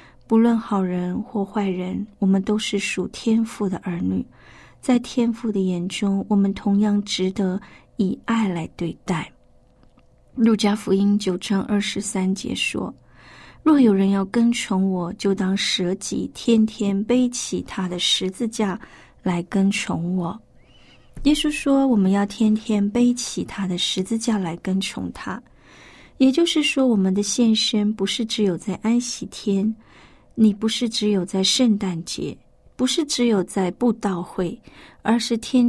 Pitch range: 190-225 Hz